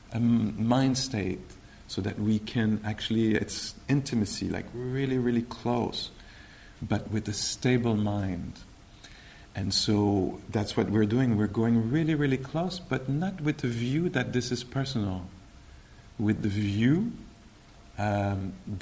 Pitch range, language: 100-120 Hz, English